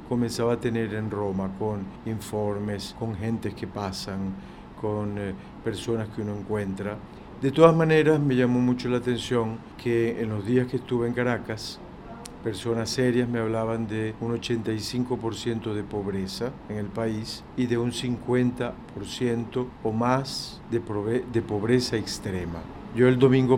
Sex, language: male, Spanish